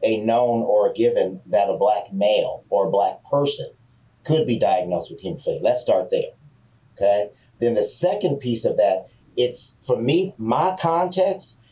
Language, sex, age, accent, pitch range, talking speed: English, male, 40-59, American, 125-165 Hz, 170 wpm